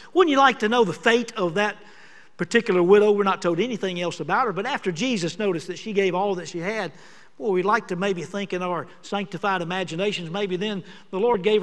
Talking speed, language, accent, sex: 225 wpm, English, American, male